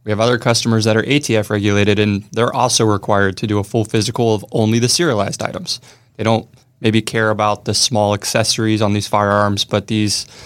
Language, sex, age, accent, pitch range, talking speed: English, male, 20-39, American, 105-120 Hz, 195 wpm